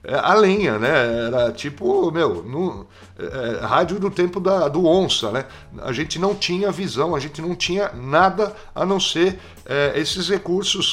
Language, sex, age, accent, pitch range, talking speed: Portuguese, male, 60-79, Brazilian, 130-175 Hz, 170 wpm